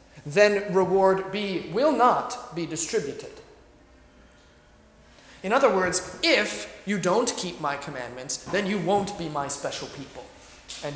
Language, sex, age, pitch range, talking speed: English, male, 30-49, 140-205 Hz, 130 wpm